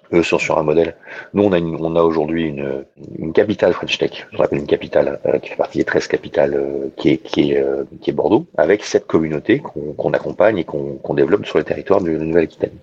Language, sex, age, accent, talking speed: French, male, 40-59, French, 255 wpm